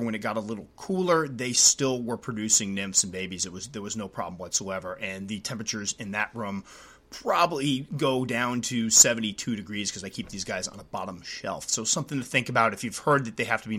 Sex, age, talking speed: male, 30-49, 235 wpm